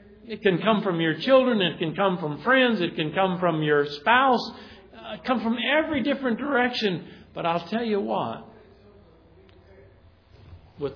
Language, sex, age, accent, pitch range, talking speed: English, male, 50-69, American, 150-215 Hz, 155 wpm